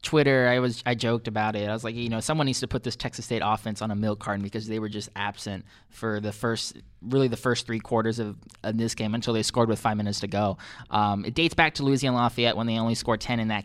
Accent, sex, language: American, male, English